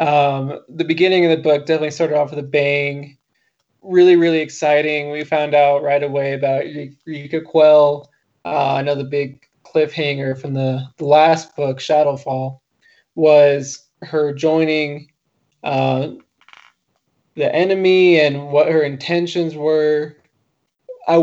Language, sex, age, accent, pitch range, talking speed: English, male, 20-39, American, 140-160 Hz, 125 wpm